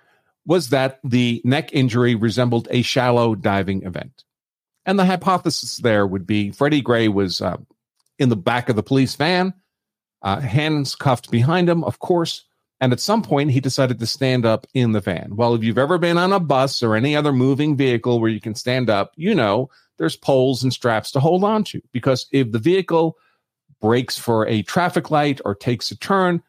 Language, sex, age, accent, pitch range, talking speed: English, male, 50-69, American, 115-150 Hz, 195 wpm